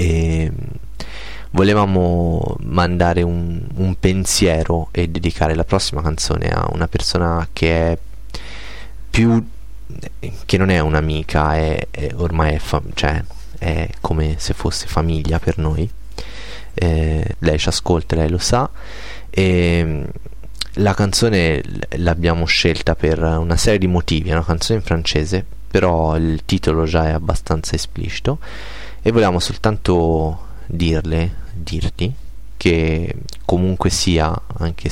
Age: 20-39